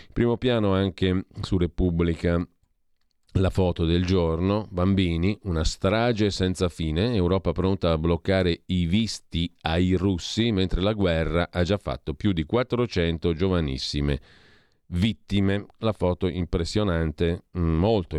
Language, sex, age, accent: Italian, male, 40-59, native